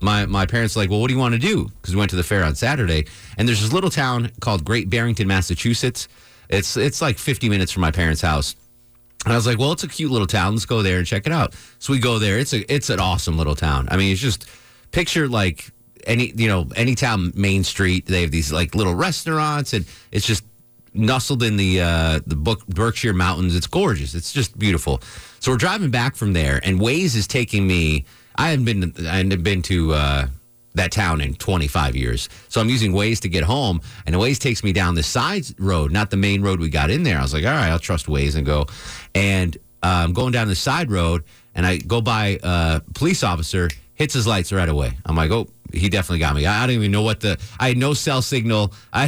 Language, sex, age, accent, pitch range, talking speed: English, male, 30-49, American, 85-120 Hz, 245 wpm